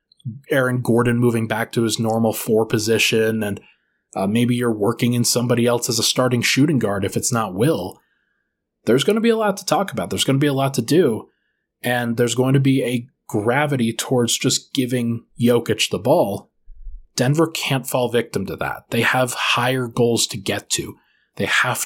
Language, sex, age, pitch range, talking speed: English, male, 20-39, 115-135 Hz, 195 wpm